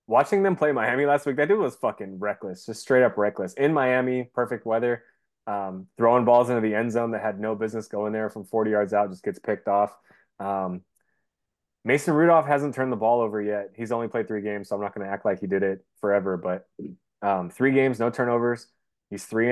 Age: 20-39